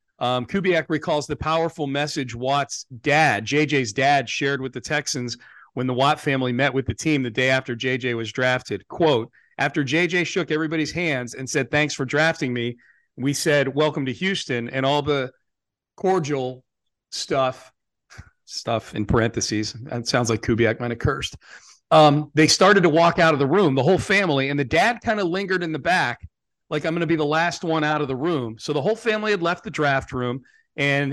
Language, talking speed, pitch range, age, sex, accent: English, 200 wpm, 130-160 Hz, 40-59, male, American